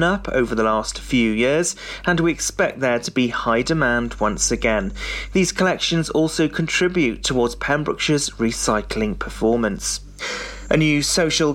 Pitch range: 125-170 Hz